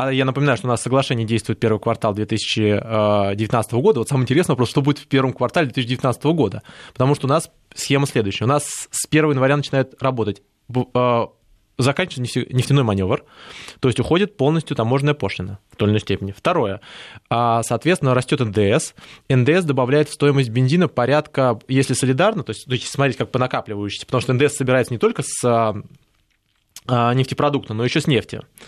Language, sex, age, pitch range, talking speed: Russian, male, 20-39, 115-145 Hz, 165 wpm